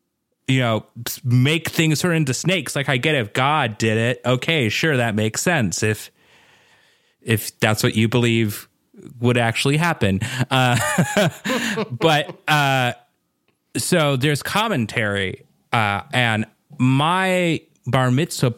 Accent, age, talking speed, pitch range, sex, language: American, 30-49, 125 wpm, 115-150 Hz, male, English